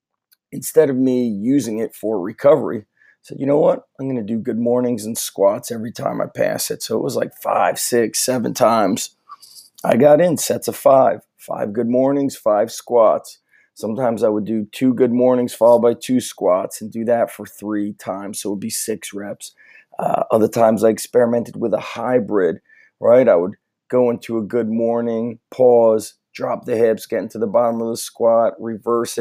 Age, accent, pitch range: 30-49, American, 115-130 Hz